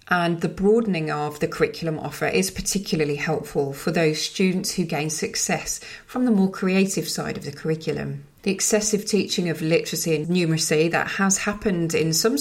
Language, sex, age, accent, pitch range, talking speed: English, female, 40-59, British, 155-190 Hz, 175 wpm